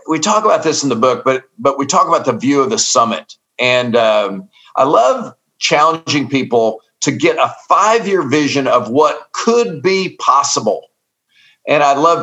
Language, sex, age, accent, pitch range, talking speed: English, male, 50-69, American, 135-180 Hz, 175 wpm